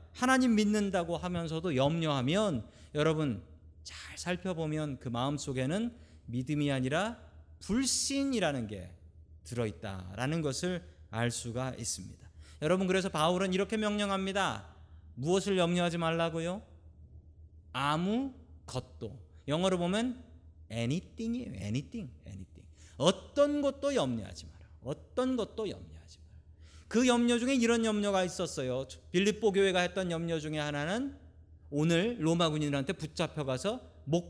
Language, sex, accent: Korean, male, native